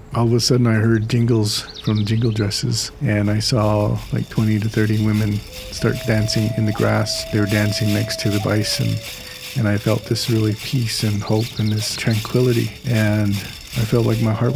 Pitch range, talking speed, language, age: 110-125 Hz, 195 wpm, English, 40-59